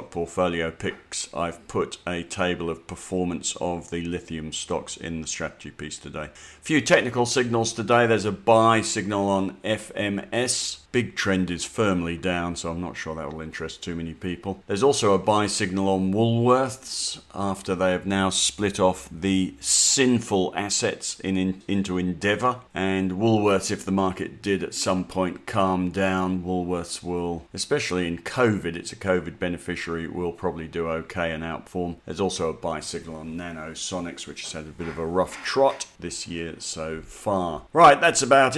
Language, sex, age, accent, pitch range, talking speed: English, male, 50-69, British, 90-120 Hz, 175 wpm